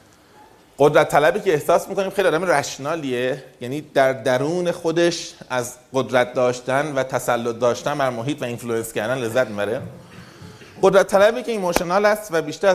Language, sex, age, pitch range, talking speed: Persian, male, 30-49, 135-200 Hz, 150 wpm